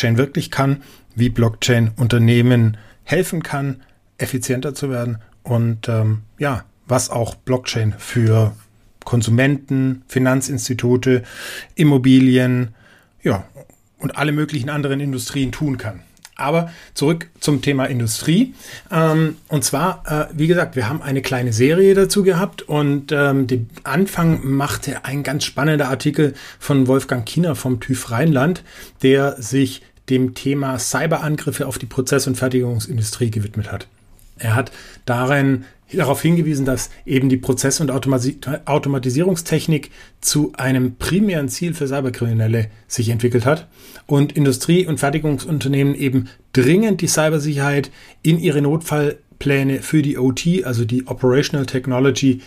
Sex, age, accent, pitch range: male, 30-49, German, 120-145 Hz